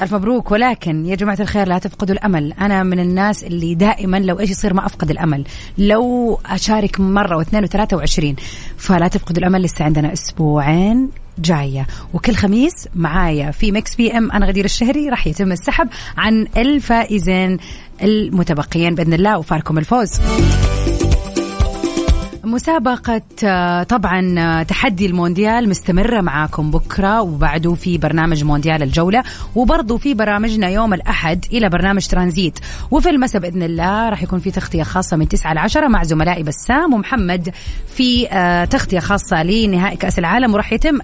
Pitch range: 170-220 Hz